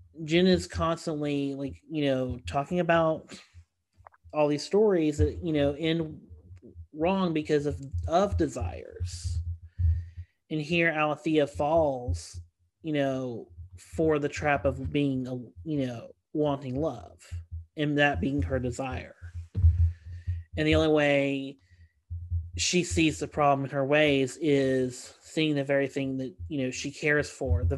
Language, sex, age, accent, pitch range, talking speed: English, male, 30-49, American, 90-145 Hz, 140 wpm